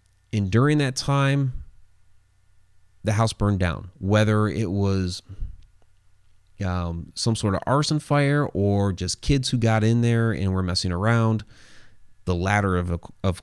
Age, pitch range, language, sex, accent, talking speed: 30-49, 90-110 Hz, English, male, American, 145 wpm